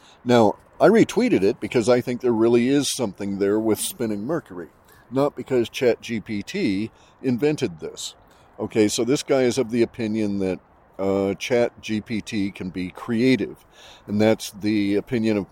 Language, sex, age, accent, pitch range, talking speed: English, male, 40-59, American, 100-120 Hz, 150 wpm